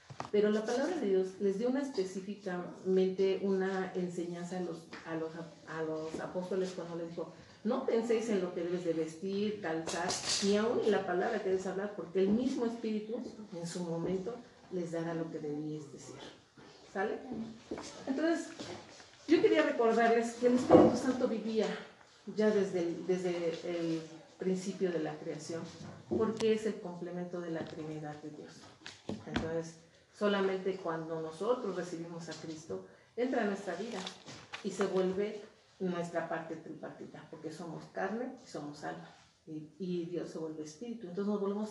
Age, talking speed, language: 40-59, 150 wpm, Spanish